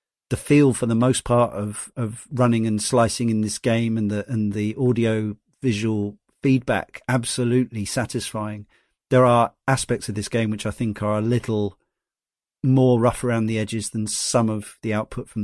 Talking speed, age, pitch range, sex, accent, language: 180 wpm, 40-59, 110-130 Hz, male, British, English